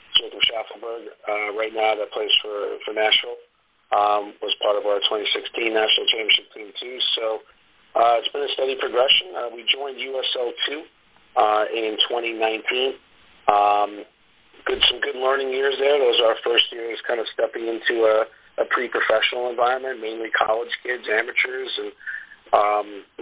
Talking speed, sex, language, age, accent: 160 wpm, male, English, 40-59, American